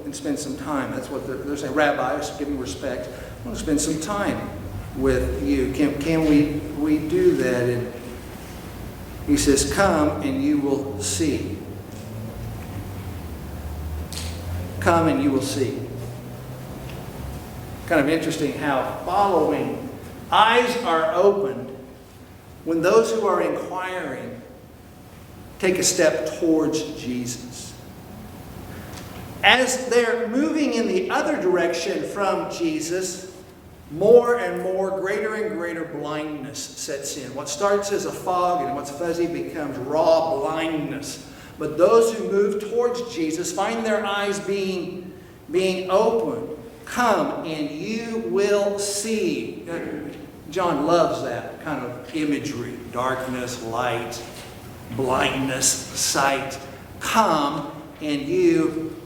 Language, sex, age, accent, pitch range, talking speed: English, male, 60-79, American, 120-185 Hz, 115 wpm